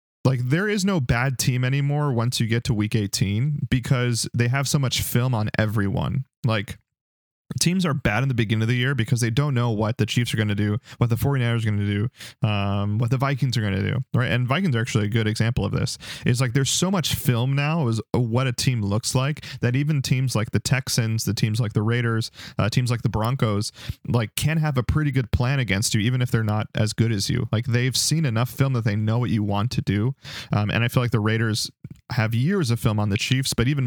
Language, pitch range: English, 110-135 Hz